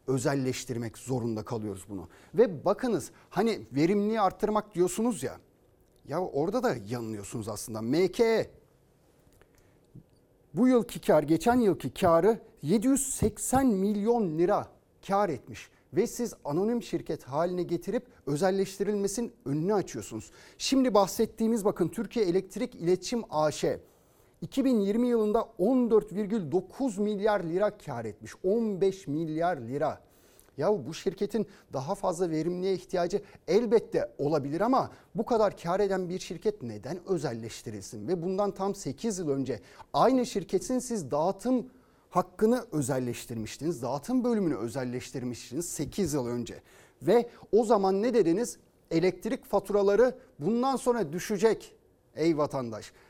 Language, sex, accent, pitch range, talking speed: Turkish, male, native, 150-225 Hz, 115 wpm